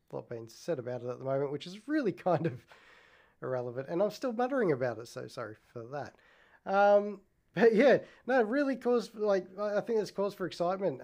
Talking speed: 200 wpm